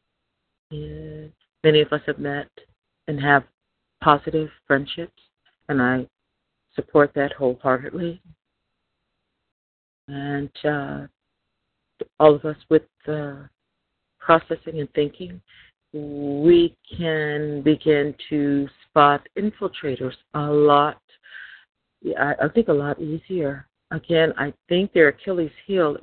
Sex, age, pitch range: female, 40-59, 145-170 Hz